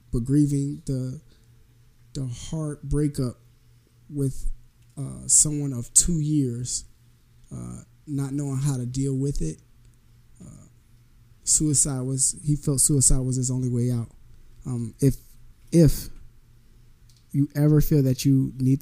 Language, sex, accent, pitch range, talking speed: English, male, American, 120-145 Hz, 130 wpm